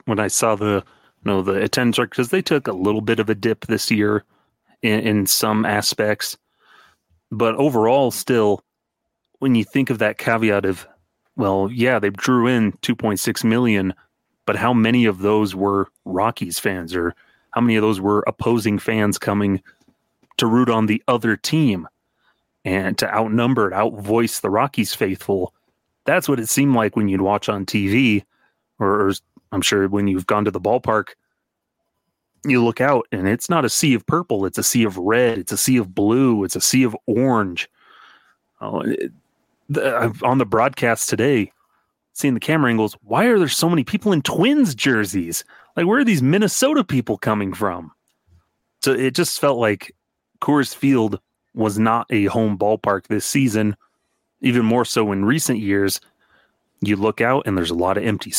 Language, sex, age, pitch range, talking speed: English, male, 30-49, 100-125 Hz, 175 wpm